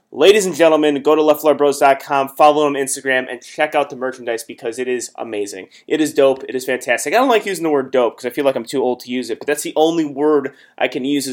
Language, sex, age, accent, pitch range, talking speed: English, male, 30-49, American, 130-165 Hz, 270 wpm